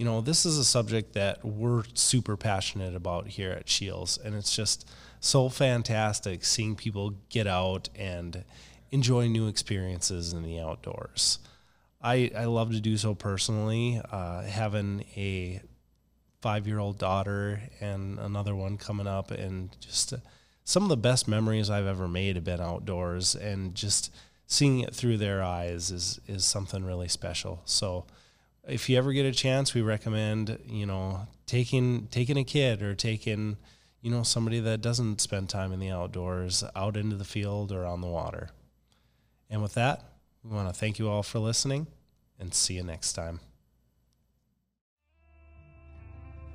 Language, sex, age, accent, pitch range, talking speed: English, male, 20-39, American, 90-115 Hz, 160 wpm